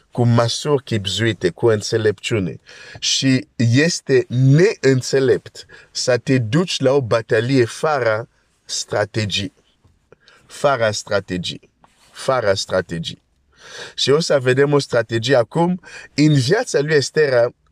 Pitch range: 105-135 Hz